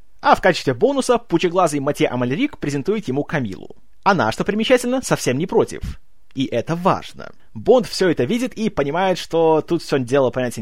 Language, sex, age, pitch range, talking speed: Russian, male, 20-39, 140-200 Hz, 170 wpm